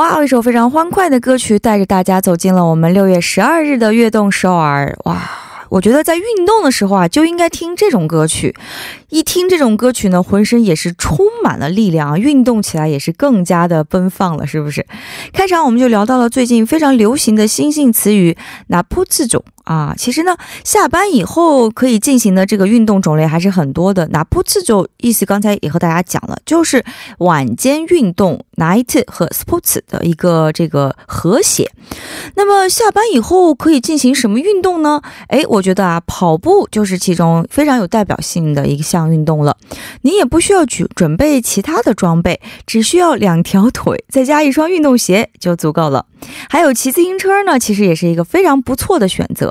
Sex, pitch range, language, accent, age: female, 180-295 Hz, Korean, Chinese, 20-39